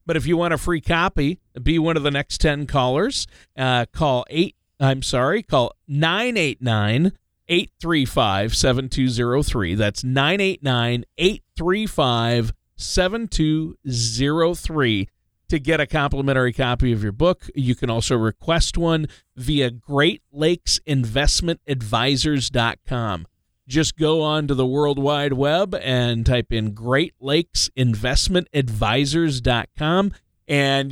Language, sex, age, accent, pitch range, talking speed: English, male, 40-59, American, 120-155 Hz, 115 wpm